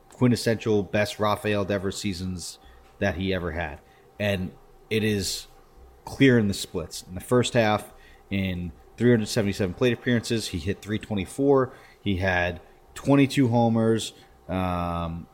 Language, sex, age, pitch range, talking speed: English, male, 30-49, 90-110 Hz, 125 wpm